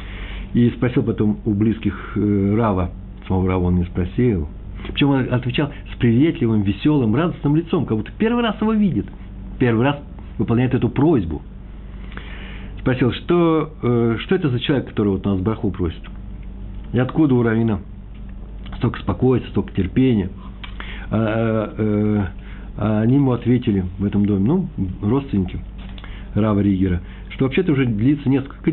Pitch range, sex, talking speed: 95-125 Hz, male, 135 wpm